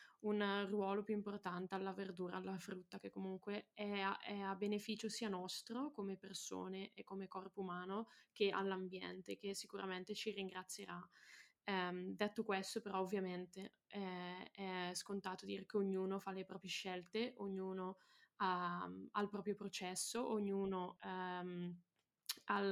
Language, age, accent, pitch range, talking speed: Italian, 10-29, native, 185-205 Hz, 140 wpm